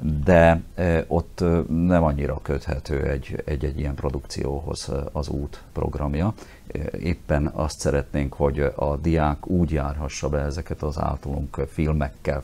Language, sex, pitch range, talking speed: Hungarian, male, 70-80 Hz, 115 wpm